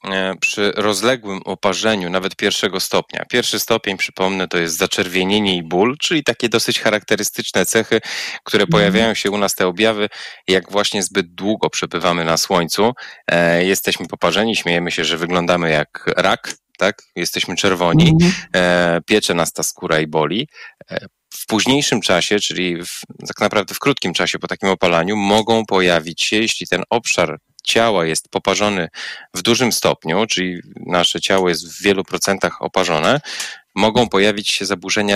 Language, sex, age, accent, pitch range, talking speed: Polish, male, 20-39, native, 90-110 Hz, 150 wpm